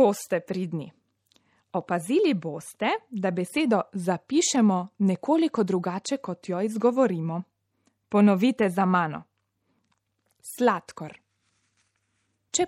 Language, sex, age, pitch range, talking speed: Italian, female, 20-39, 180-275 Hz, 80 wpm